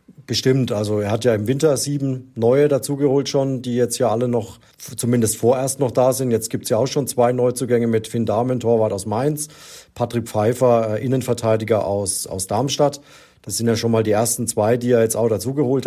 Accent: German